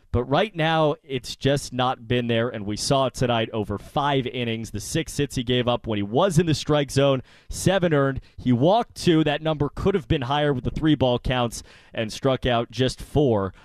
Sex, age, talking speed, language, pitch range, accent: male, 30-49, 220 wpm, English, 120-160 Hz, American